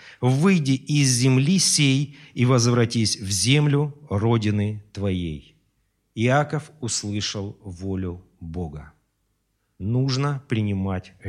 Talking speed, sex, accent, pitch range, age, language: 85 wpm, male, native, 100-130 Hz, 40-59, Russian